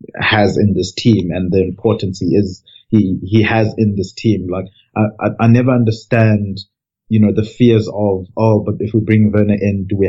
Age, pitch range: 30-49, 100-115 Hz